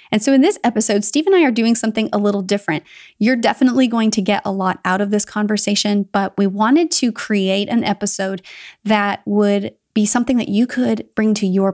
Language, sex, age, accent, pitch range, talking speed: English, female, 30-49, American, 195-220 Hz, 215 wpm